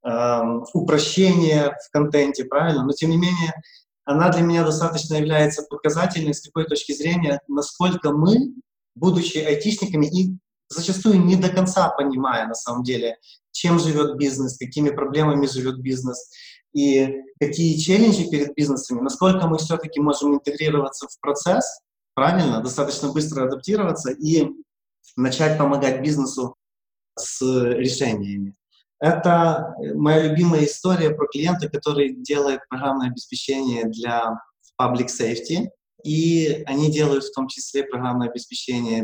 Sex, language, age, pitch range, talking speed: male, English, 20-39, 125-165 Hz, 125 wpm